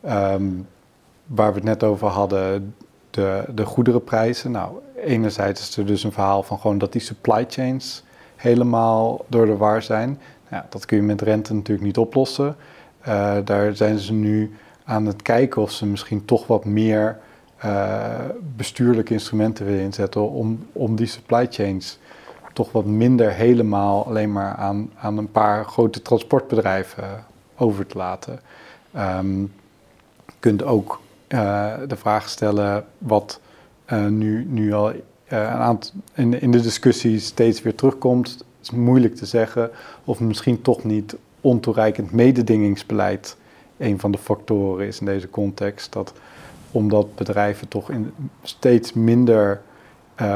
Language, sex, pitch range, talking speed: Dutch, male, 100-120 Hz, 150 wpm